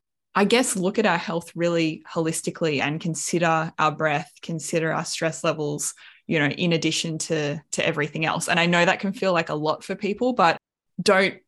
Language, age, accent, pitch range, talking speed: English, 20-39, Australian, 155-185 Hz, 195 wpm